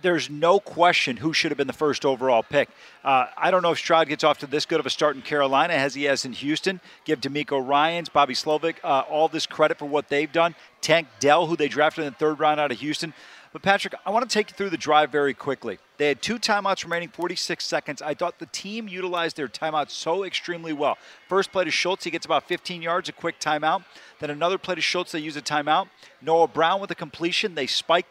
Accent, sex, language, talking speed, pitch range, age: American, male, English, 245 wpm, 155-185 Hz, 40-59